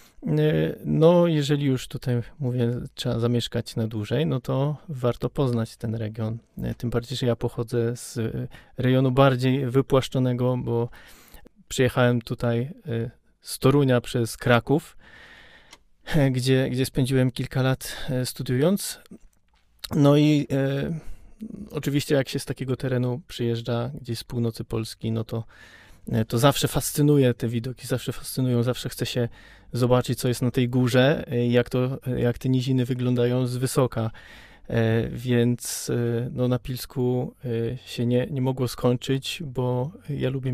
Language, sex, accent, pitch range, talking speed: Polish, male, native, 120-135 Hz, 130 wpm